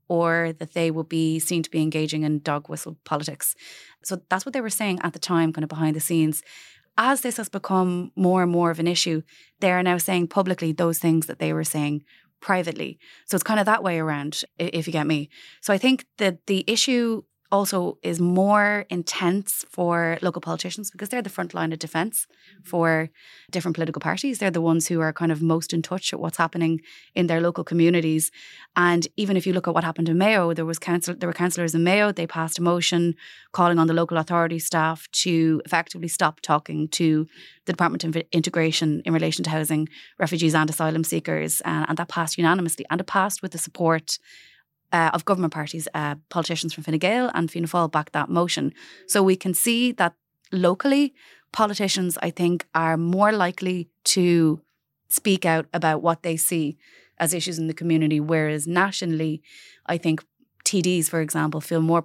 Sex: female